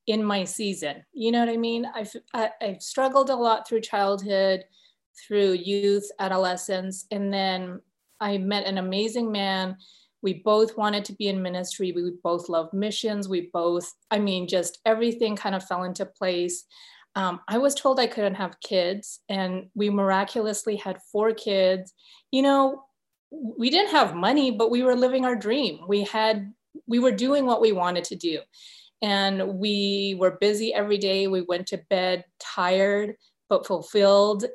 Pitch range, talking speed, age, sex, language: 190-230 Hz, 165 wpm, 30-49, female, English